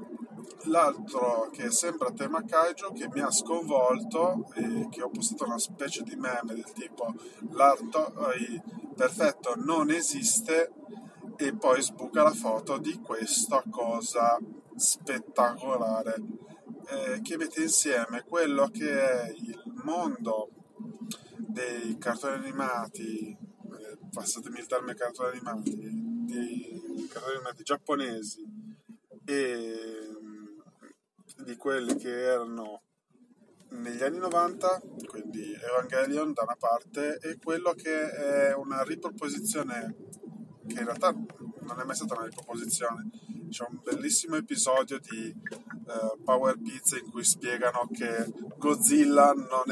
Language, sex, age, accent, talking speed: Italian, male, 20-39, native, 120 wpm